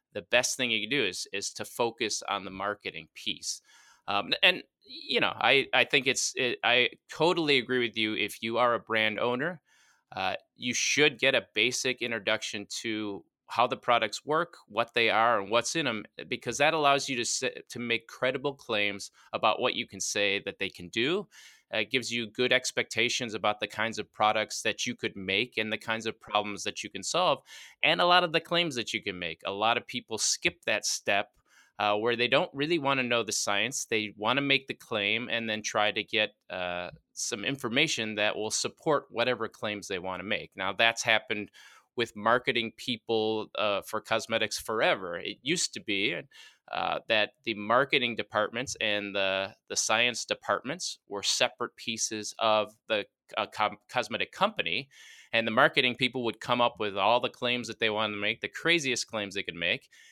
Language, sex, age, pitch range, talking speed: English, male, 20-39, 105-125 Hz, 200 wpm